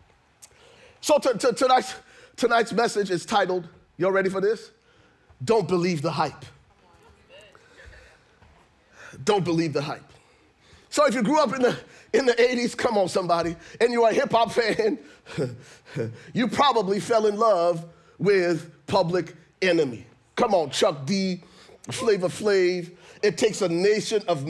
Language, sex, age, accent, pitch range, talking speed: English, male, 30-49, American, 170-250 Hz, 140 wpm